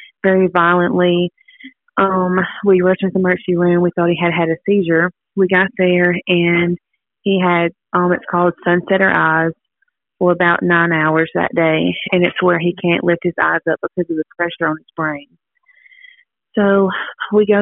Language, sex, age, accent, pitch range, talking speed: English, female, 20-39, American, 170-190 Hz, 175 wpm